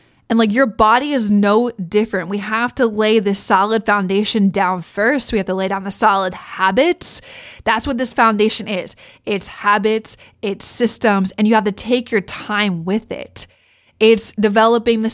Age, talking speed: 20-39, 180 wpm